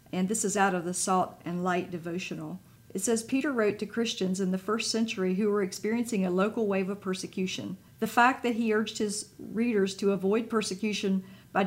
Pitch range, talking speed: 185-225 Hz, 200 wpm